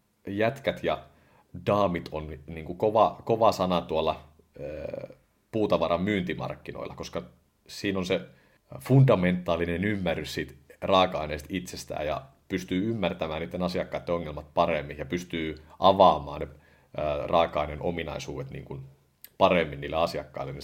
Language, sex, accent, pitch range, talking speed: Finnish, male, native, 75-90 Hz, 115 wpm